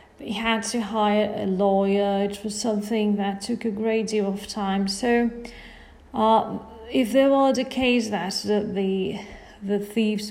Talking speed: 155 wpm